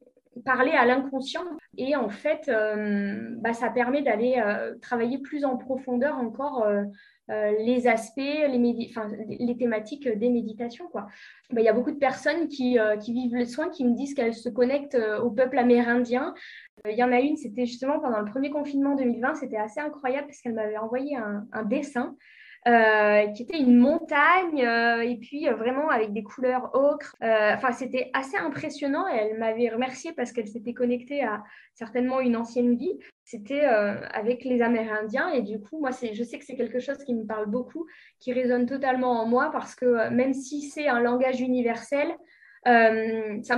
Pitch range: 230-275 Hz